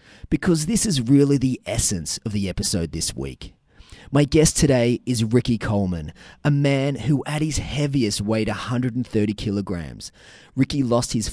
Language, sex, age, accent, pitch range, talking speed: English, male, 30-49, Australian, 105-140 Hz, 155 wpm